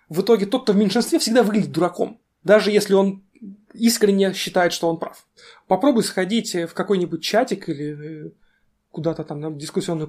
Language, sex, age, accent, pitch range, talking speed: Russian, male, 20-39, native, 175-220 Hz, 160 wpm